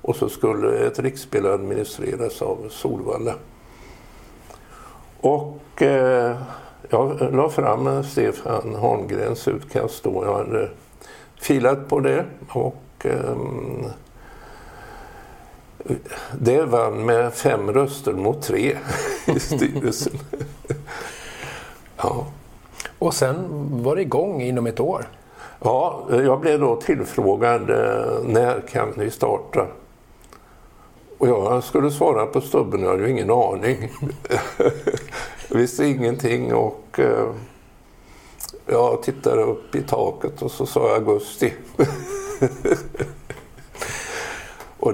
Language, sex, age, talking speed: Swedish, male, 60-79, 100 wpm